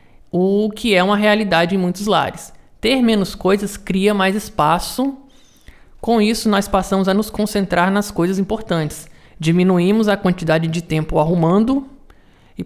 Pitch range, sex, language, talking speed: 170-210 Hz, male, Portuguese, 145 wpm